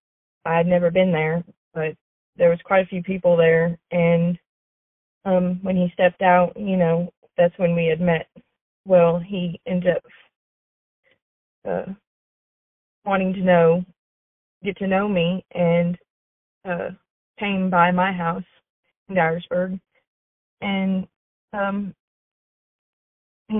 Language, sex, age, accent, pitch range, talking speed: English, female, 20-39, American, 170-195 Hz, 125 wpm